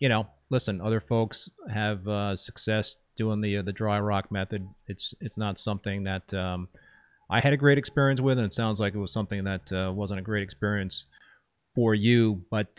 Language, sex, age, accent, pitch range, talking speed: English, male, 30-49, American, 105-120 Hz, 200 wpm